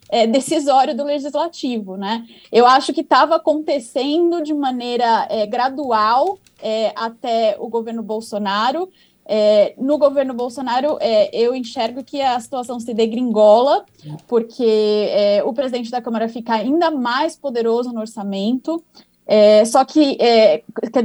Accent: Brazilian